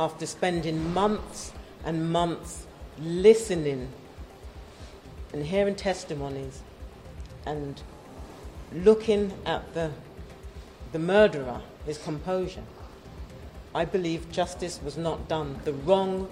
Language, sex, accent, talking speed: Turkish, female, British, 80 wpm